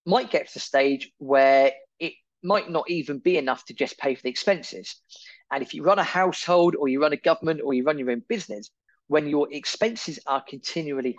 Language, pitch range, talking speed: English, 130-180 Hz, 215 wpm